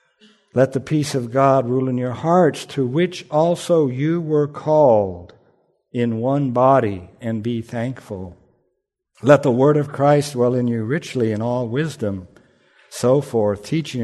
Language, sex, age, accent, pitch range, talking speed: English, male, 60-79, American, 110-140 Hz, 155 wpm